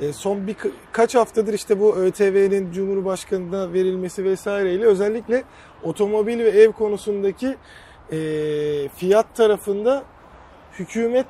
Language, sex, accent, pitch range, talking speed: Turkish, male, native, 175-225 Hz, 90 wpm